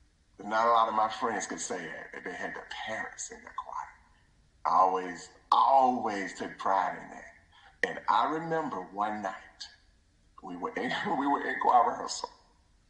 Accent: American